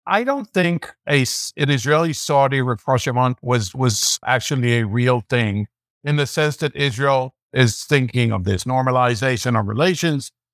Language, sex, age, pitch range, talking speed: English, male, 60-79, 125-155 Hz, 140 wpm